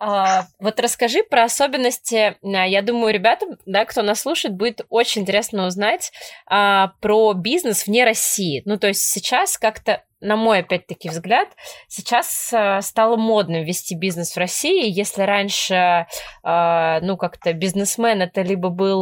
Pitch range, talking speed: 180-220 Hz, 150 wpm